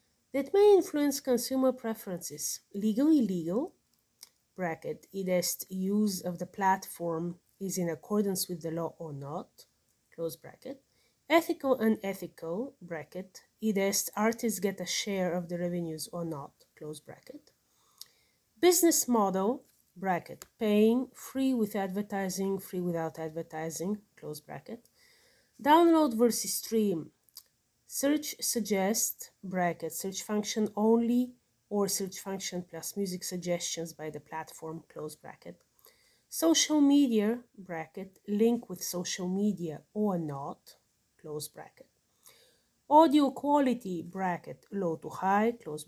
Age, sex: 30-49, female